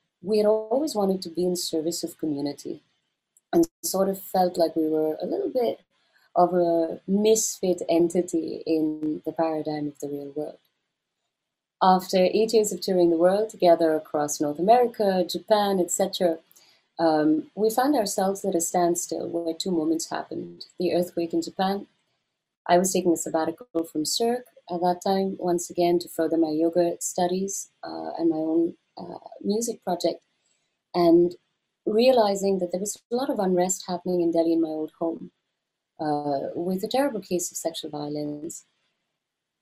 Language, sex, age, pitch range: English, female, 30-49, 165-200 Hz